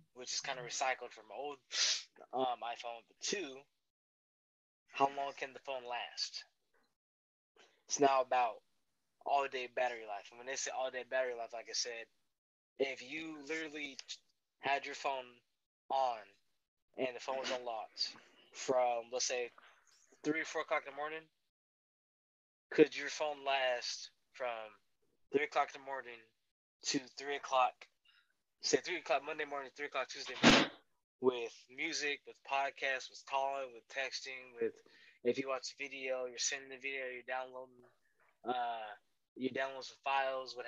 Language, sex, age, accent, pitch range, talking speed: English, male, 20-39, American, 125-145 Hz, 155 wpm